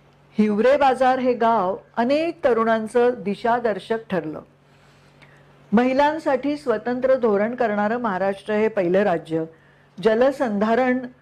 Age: 50-69